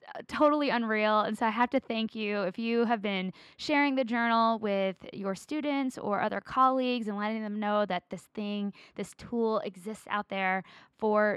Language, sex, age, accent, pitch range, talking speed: English, female, 20-39, American, 195-240 Hz, 190 wpm